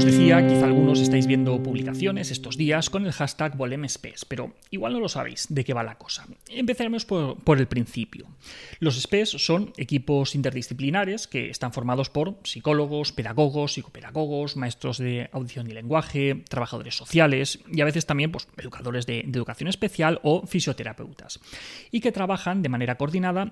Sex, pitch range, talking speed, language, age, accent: male, 130-170 Hz, 165 wpm, Spanish, 30-49, Spanish